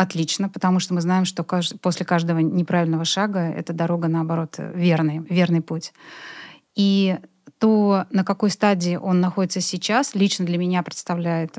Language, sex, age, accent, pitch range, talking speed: Russian, female, 30-49, native, 170-200 Hz, 145 wpm